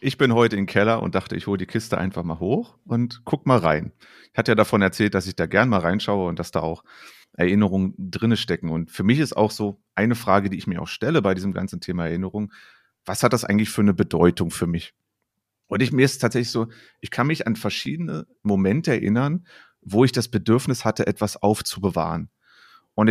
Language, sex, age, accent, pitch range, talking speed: German, male, 30-49, German, 95-120 Hz, 220 wpm